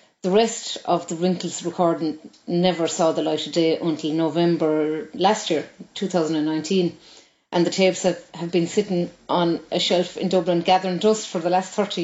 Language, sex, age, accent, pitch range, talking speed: English, female, 30-49, Irish, 165-190 Hz, 175 wpm